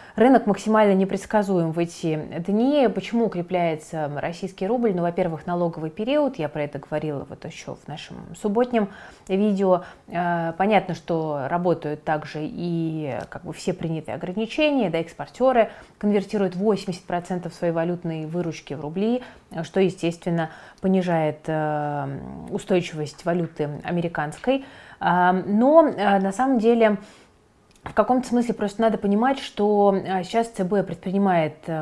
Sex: female